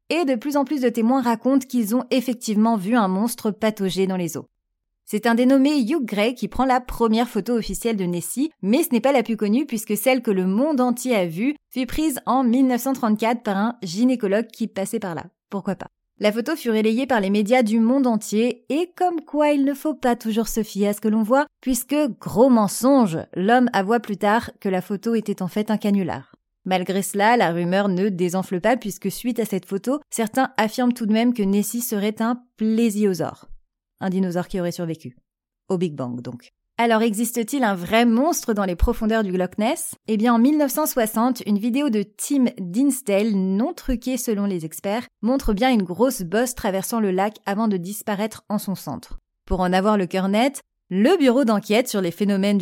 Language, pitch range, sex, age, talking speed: French, 195-250 Hz, female, 30-49, 205 wpm